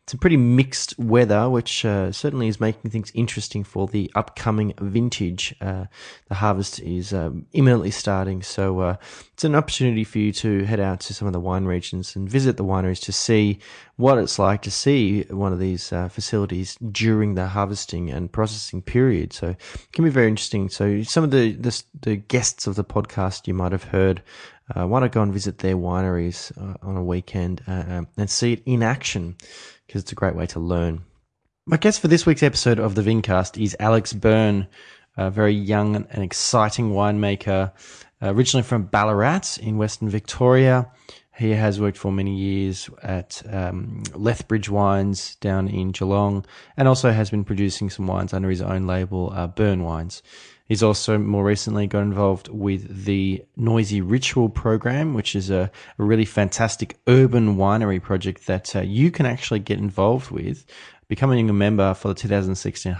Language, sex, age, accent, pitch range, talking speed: English, male, 20-39, Australian, 95-115 Hz, 180 wpm